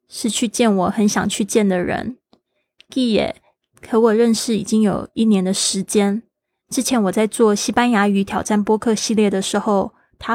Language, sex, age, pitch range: Chinese, female, 20-39, 200-235 Hz